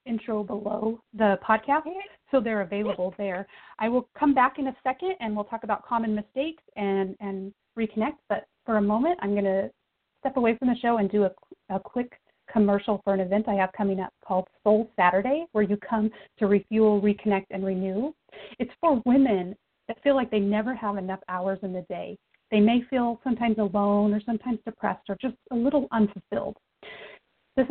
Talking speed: 190 wpm